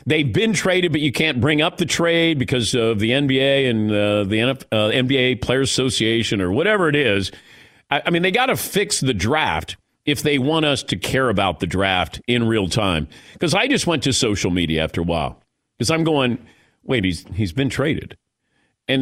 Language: English